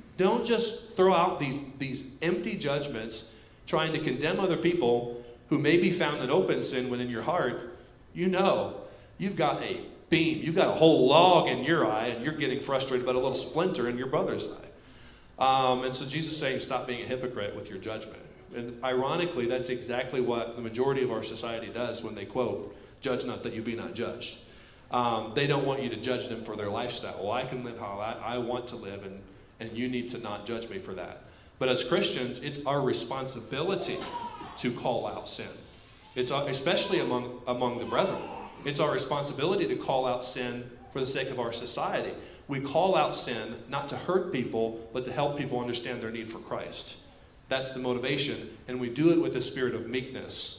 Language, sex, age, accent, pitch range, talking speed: English, male, 40-59, American, 120-140 Hz, 205 wpm